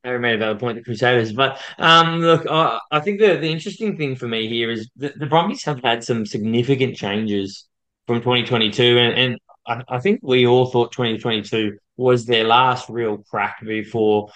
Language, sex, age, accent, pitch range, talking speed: English, male, 20-39, Australian, 110-135 Hz, 210 wpm